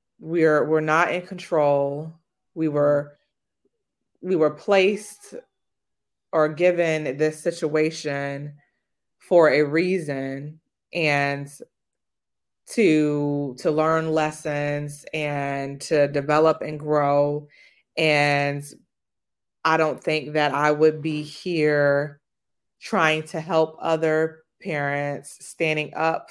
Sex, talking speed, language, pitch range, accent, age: female, 100 wpm, English, 145-160 Hz, American, 20-39